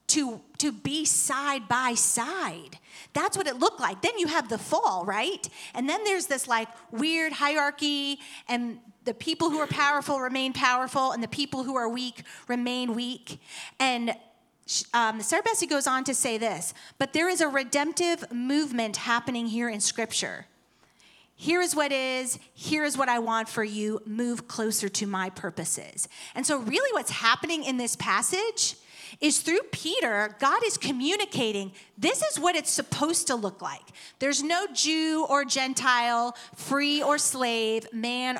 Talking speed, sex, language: 165 wpm, female, English